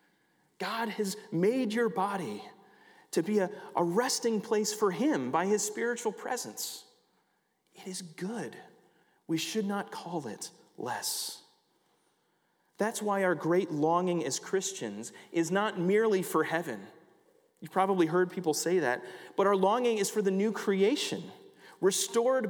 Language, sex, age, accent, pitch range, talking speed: English, male, 30-49, American, 130-210 Hz, 140 wpm